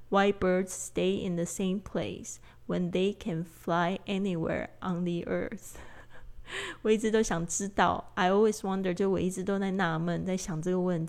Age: 20-39